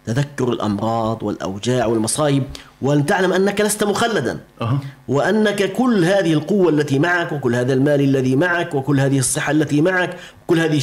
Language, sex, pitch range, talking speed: Arabic, male, 125-165 Hz, 150 wpm